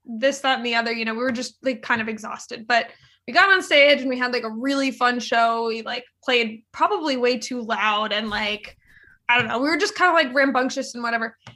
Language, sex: English, female